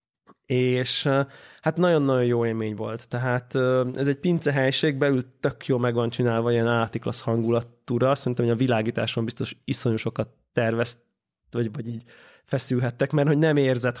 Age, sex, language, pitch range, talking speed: 20-39, male, Hungarian, 115-135 Hz, 145 wpm